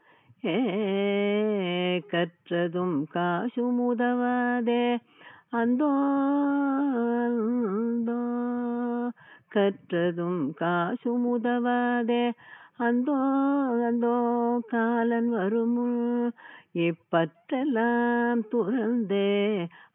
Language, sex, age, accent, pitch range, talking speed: Tamil, female, 50-69, native, 155-235 Hz, 35 wpm